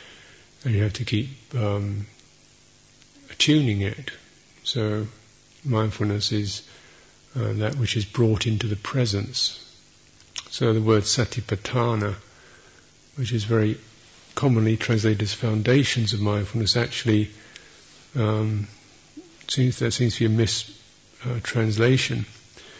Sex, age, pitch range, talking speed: male, 50-69, 105-120 Hz, 105 wpm